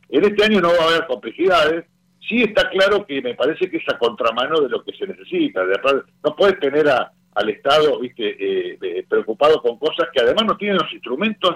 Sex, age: male, 50-69